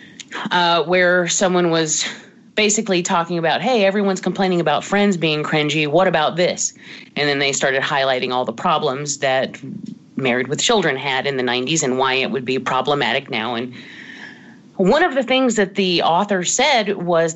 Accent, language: American, English